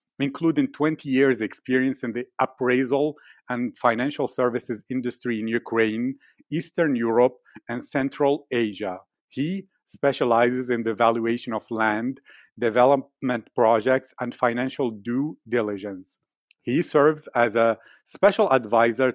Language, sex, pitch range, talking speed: English, male, 120-135 Hz, 115 wpm